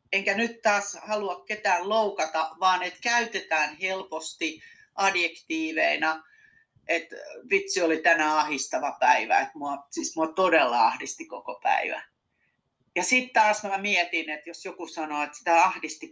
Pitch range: 155-245 Hz